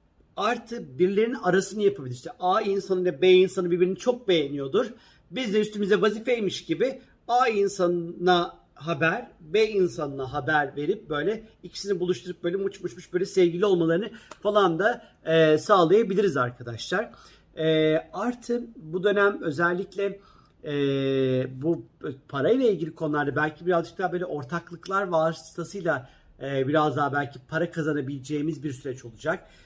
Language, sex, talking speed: Turkish, male, 125 wpm